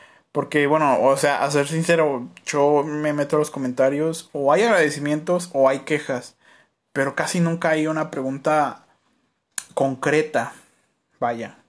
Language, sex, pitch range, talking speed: Spanish, male, 135-165 Hz, 140 wpm